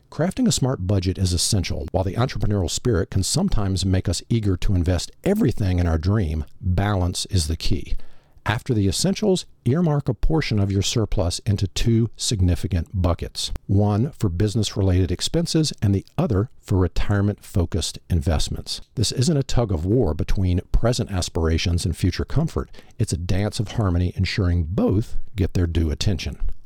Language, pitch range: English, 90-115 Hz